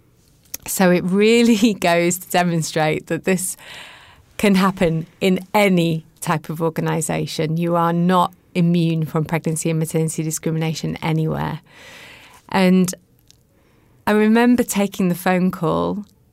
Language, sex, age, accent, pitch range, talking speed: English, female, 30-49, British, 160-185 Hz, 120 wpm